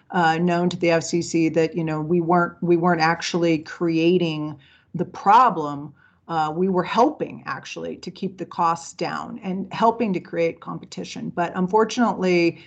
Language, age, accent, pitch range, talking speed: English, 40-59, American, 165-195 Hz, 155 wpm